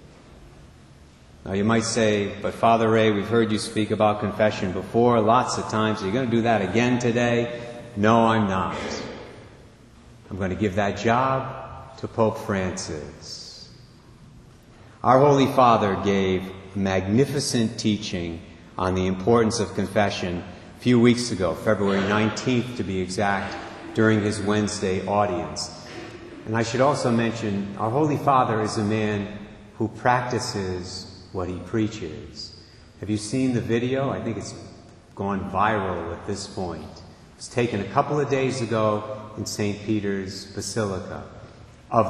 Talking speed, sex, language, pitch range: 150 wpm, male, English, 100-115 Hz